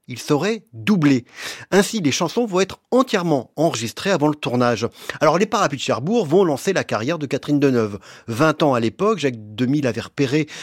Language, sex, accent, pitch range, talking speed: French, male, French, 125-195 Hz, 185 wpm